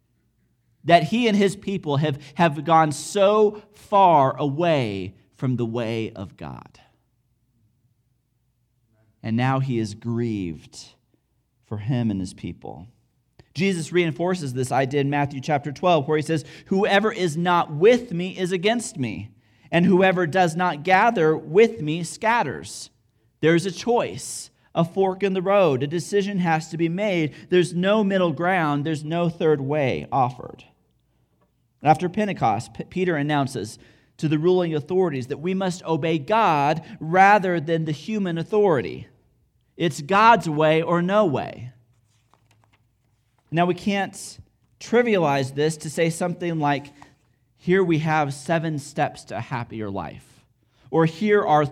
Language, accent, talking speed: English, American, 140 wpm